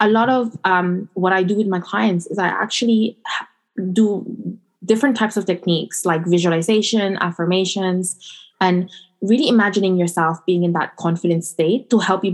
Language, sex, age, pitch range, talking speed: English, female, 20-39, 170-195 Hz, 160 wpm